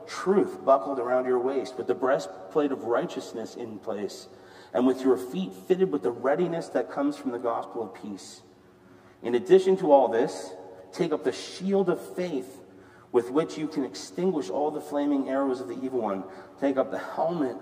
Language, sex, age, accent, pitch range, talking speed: English, male, 40-59, American, 95-125 Hz, 185 wpm